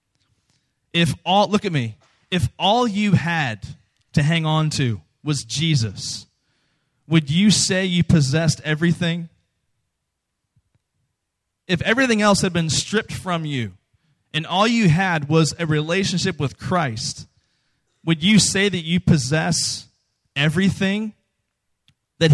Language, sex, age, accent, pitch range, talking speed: English, male, 20-39, American, 130-180 Hz, 125 wpm